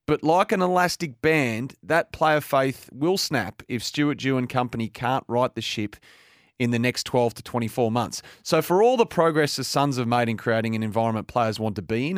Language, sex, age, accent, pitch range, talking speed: English, male, 30-49, Australian, 115-155 Hz, 220 wpm